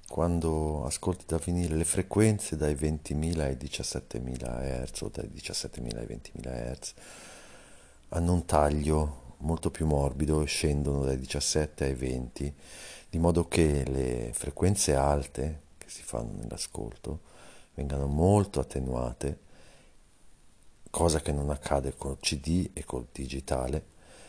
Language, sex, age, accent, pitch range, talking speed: Italian, male, 50-69, native, 70-80 Hz, 130 wpm